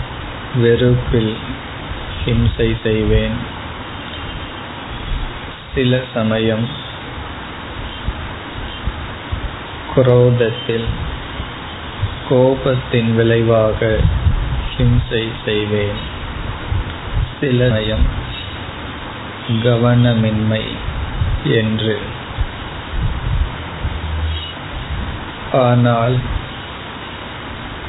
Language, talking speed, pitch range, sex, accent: Tamil, 30 wpm, 105-120 Hz, male, native